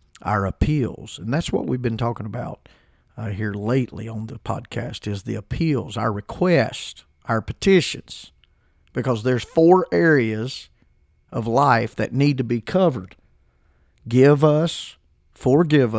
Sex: male